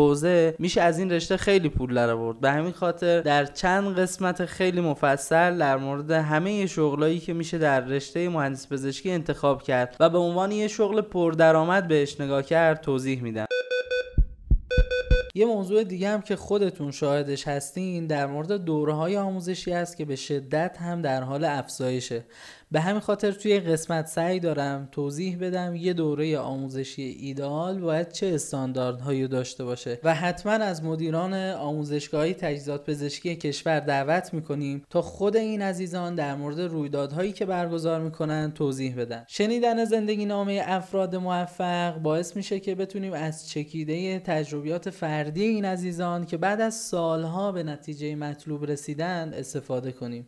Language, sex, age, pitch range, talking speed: Persian, male, 10-29, 145-185 Hz, 155 wpm